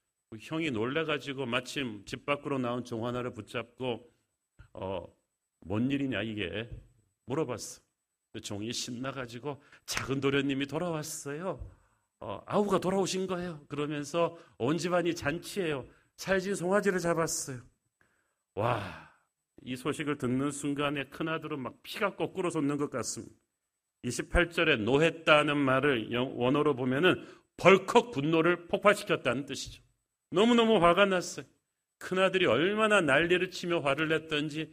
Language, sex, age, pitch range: Korean, male, 40-59, 125-170 Hz